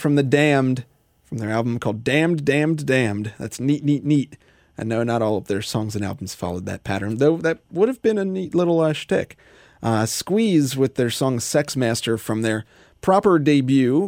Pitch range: 110-145 Hz